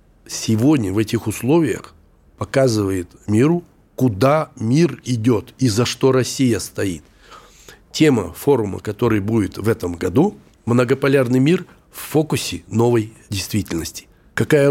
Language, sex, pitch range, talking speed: Russian, male, 110-140 Hz, 115 wpm